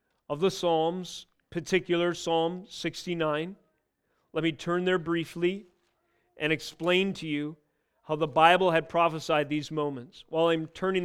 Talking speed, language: 135 wpm, English